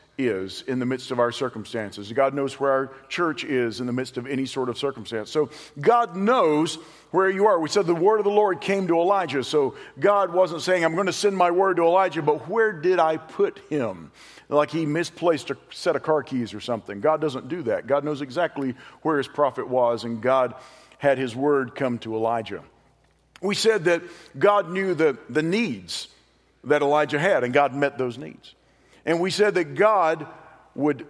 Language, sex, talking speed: English, male, 205 wpm